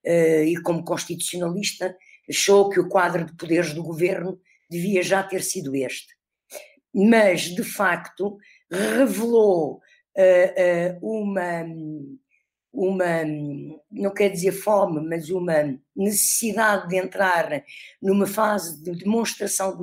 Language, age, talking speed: Portuguese, 50-69, 110 wpm